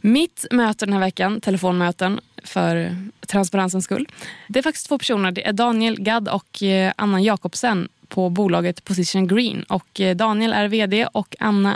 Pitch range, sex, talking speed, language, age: 190-240 Hz, female, 160 wpm, Swedish, 20-39